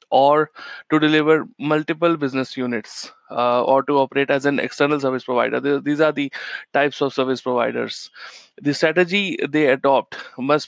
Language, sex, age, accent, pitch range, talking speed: English, male, 20-39, Indian, 130-150 Hz, 150 wpm